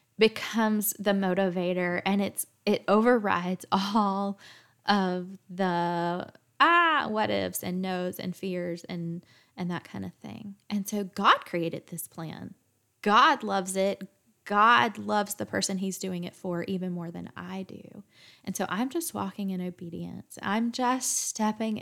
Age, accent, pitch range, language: 10-29, American, 185-220 Hz, English